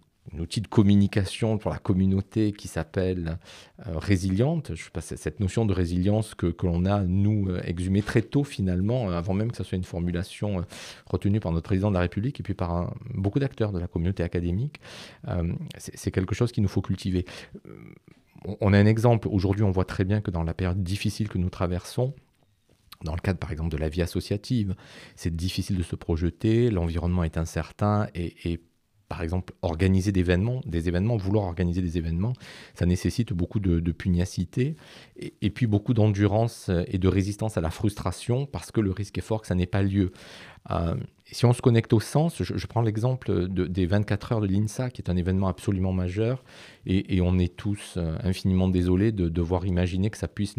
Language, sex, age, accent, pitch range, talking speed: French, male, 40-59, French, 90-110 Hz, 205 wpm